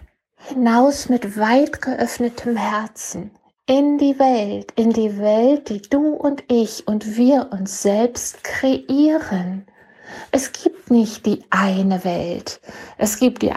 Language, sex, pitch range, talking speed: German, female, 210-250 Hz, 130 wpm